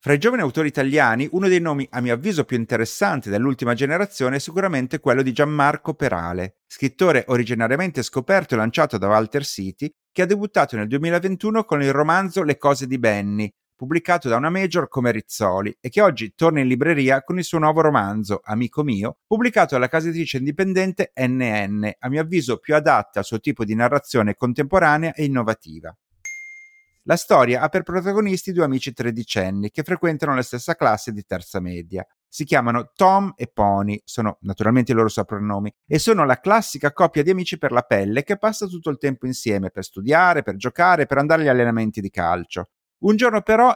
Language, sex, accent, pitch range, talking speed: Italian, male, native, 115-175 Hz, 185 wpm